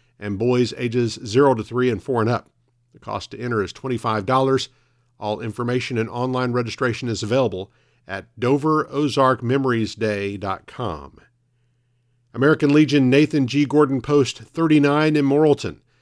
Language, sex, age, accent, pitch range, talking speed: English, male, 50-69, American, 110-140 Hz, 125 wpm